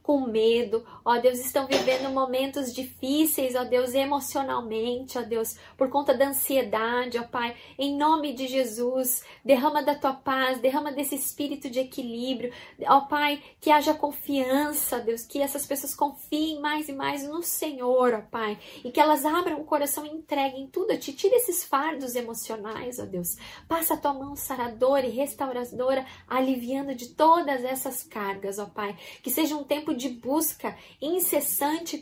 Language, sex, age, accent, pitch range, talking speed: Portuguese, female, 10-29, Brazilian, 245-285 Hz, 165 wpm